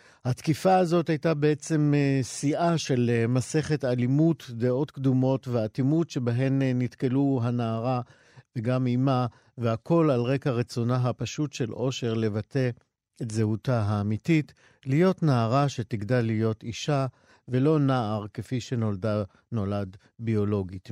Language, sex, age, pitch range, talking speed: Hebrew, male, 50-69, 120-150 Hz, 110 wpm